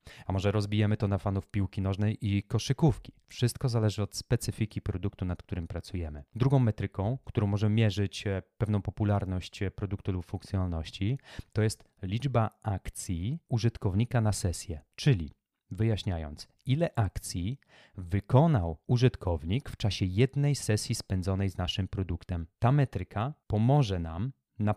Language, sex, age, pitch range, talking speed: Polish, male, 30-49, 95-115 Hz, 130 wpm